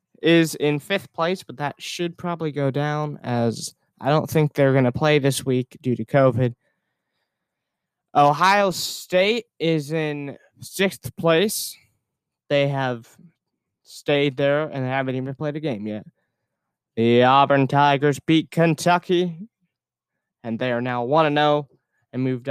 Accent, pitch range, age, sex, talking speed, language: American, 130-165 Hz, 20-39, male, 140 wpm, English